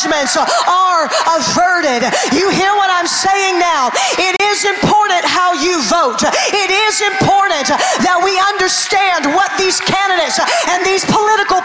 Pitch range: 315-410 Hz